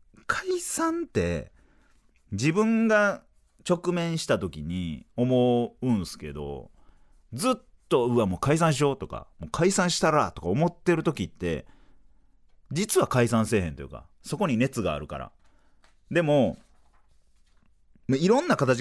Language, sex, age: Japanese, male, 40-59